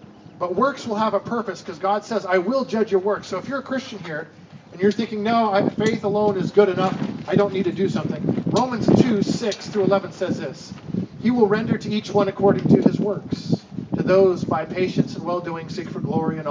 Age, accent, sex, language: 40-59, American, male, English